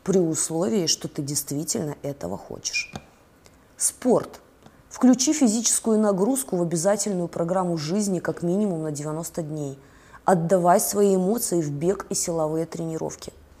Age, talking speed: 20-39, 125 wpm